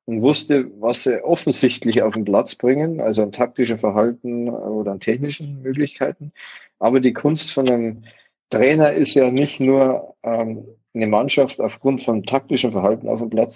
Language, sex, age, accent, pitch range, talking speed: German, male, 40-59, German, 115-140 Hz, 165 wpm